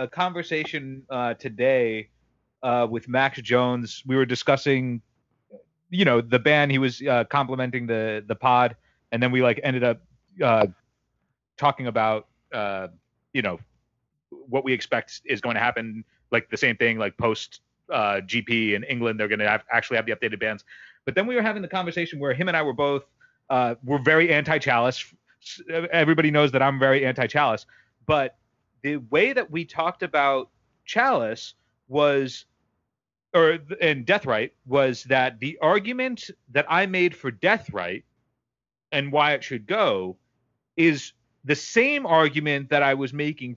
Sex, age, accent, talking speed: male, 30-49, American, 160 wpm